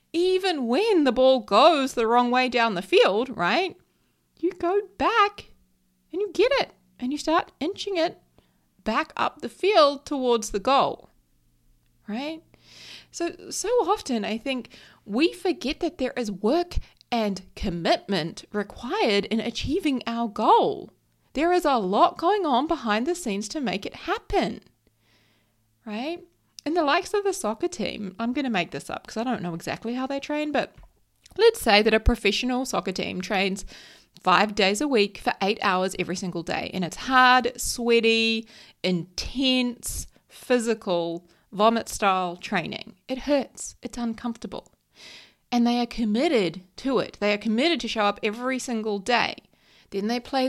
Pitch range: 205-300 Hz